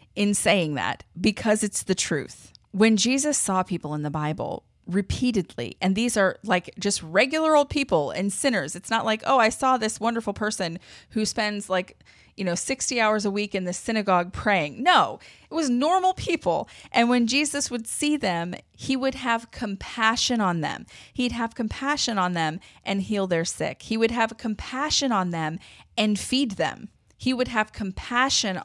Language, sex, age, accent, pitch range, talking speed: English, female, 30-49, American, 165-225 Hz, 180 wpm